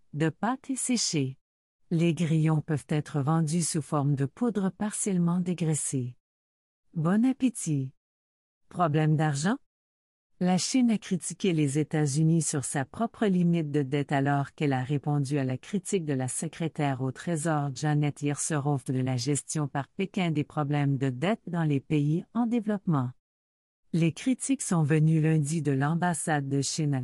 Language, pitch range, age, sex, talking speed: French, 145-180 Hz, 50-69, female, 155 wpm